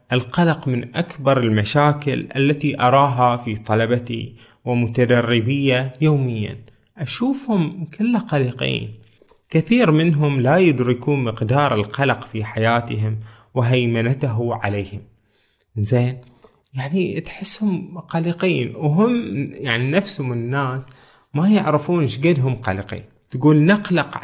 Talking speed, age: 90 wpm, 30-49